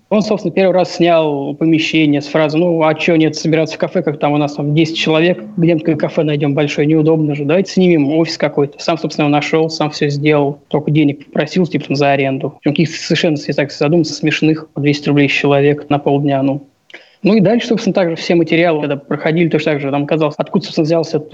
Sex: male